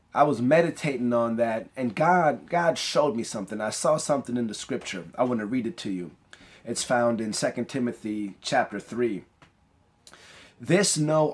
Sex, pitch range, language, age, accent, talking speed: male, 105-155 Hz, English, 30-49, American, 175 wpm